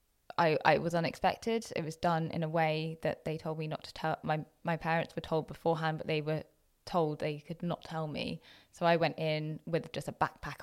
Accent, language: British, English